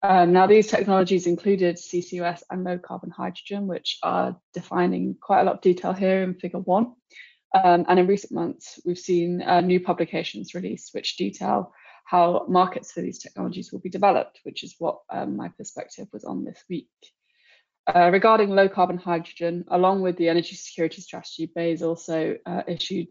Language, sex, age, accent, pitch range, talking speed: English, female, 10-29, British, 175-190 Hz, 175 wpm